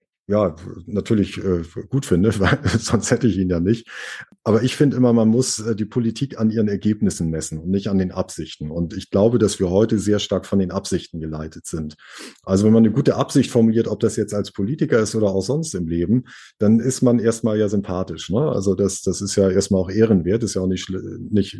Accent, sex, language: German, male, German